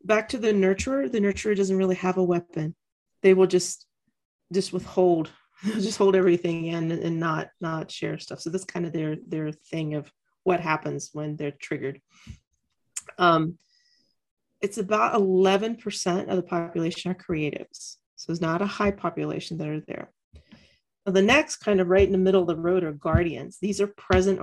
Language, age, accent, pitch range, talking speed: English, 40-59, American, 170-200 Hz, 180 wpm